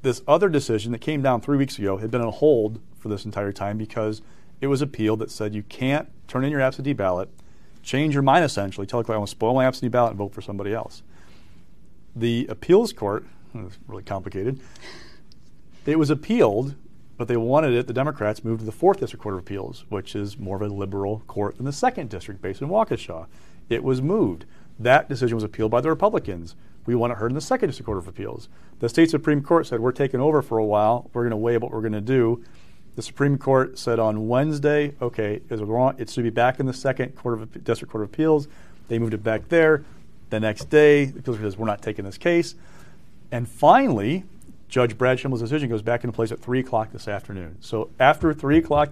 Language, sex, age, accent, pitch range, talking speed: English, male, 40-59, American, 110-140 Hz, 225 wpm